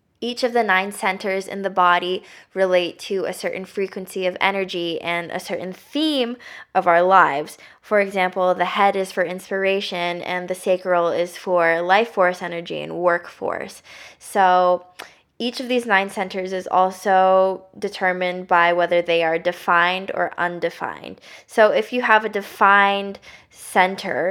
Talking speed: 155 wpm